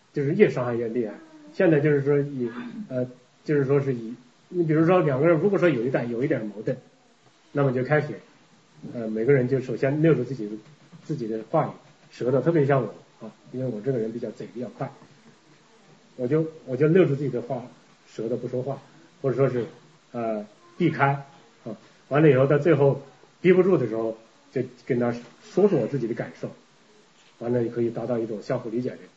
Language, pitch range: English, 115-150 Hz